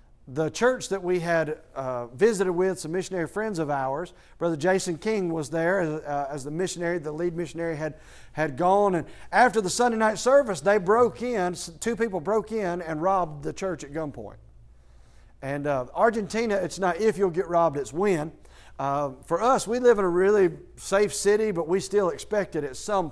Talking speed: 195 wpm